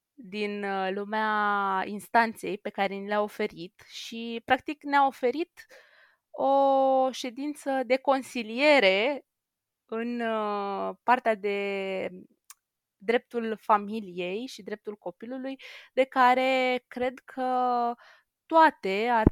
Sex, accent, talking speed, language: female, native, 95 wpm, Romanian